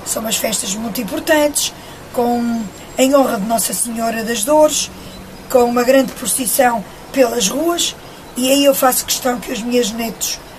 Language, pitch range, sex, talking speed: Portuguese, 235-270 Hz, female, 160 wpm